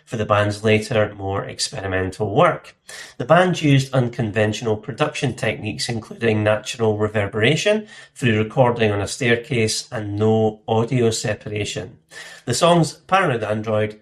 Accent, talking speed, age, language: British, 125 wpm, 40-59, English